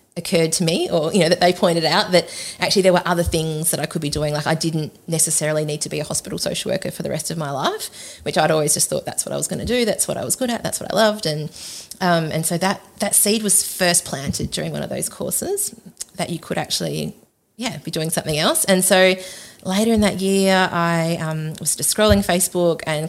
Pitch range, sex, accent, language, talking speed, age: 155-180 Hz, female, Australian, English, 250 wpm, 30-49